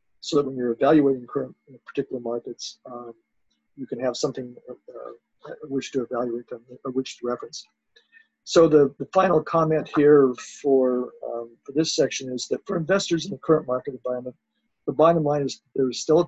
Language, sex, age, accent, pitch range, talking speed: English, male, 50-69, American, 120-150 Hz, 190 wpm